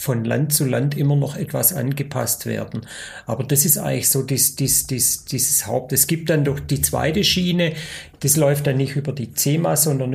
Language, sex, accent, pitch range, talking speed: German, male, German, 125-150 Hz, 205 wpm